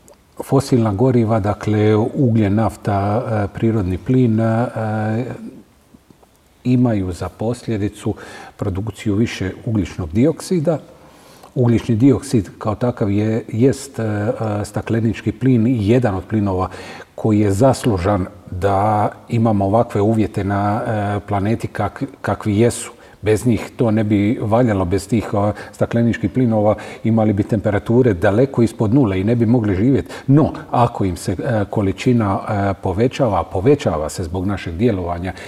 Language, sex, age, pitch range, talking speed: Croatian, male, 40-59, 100-125 Hz, 120 wpm